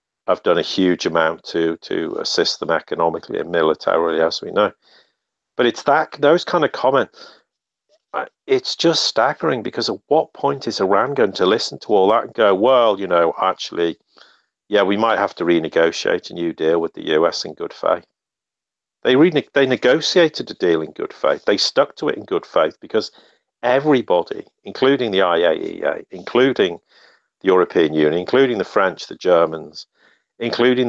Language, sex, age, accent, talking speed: English, male, 50-69, British, 175 wpm